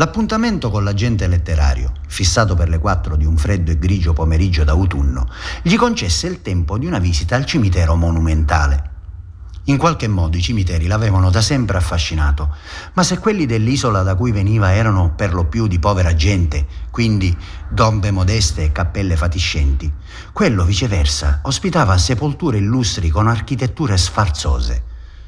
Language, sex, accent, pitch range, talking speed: Italian, male, native, 80-110 Hz, 145 wpm